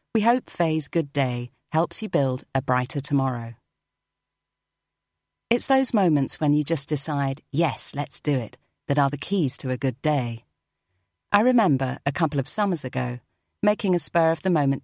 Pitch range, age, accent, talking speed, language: 130-160 Hz, 40-59, British, 160 wpm, English